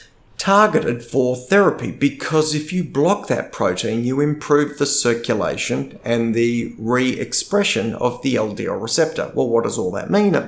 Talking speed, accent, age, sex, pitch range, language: 155 wpm, Australian, 30-49, male, 115-150 Hz, English